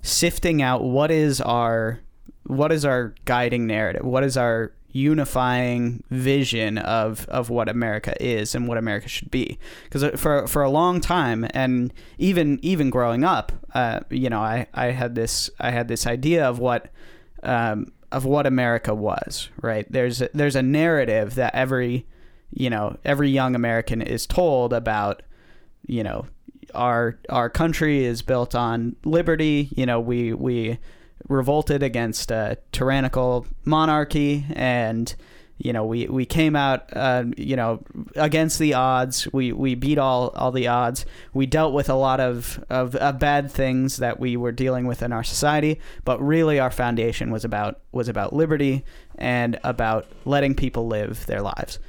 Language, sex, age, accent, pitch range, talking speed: English, male, 20-39, American, 120-145 Hz, 165 wpm